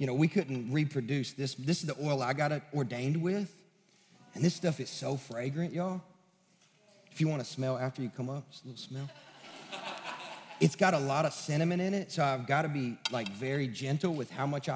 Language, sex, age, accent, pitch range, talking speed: English, male, 30-49, American, 145-200 Hz, 205 wpm